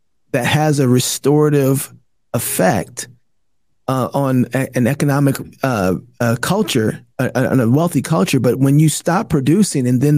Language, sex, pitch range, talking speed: English, male, 125-160 Hz, 155 wpm